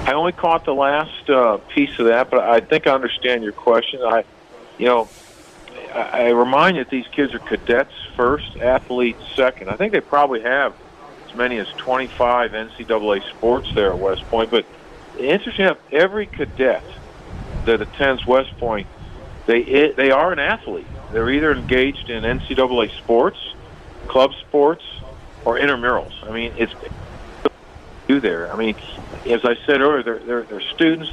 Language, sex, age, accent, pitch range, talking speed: English, male, 50-69, American, 110-135 Hz, 165 wpm